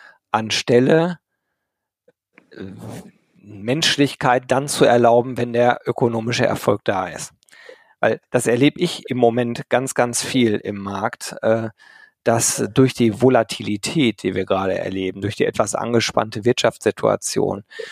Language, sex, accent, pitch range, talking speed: German, male, German, 110-135 Hz, 115 wpm